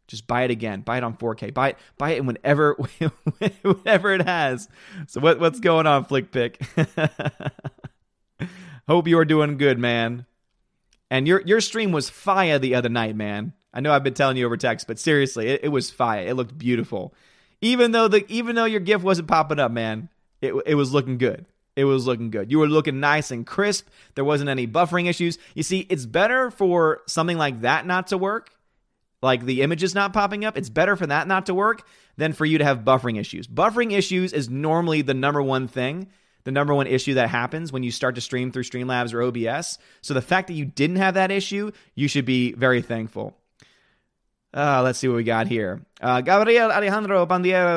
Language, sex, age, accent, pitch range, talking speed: English, male, 30-49, American, 130-190 Hz, 210 wpm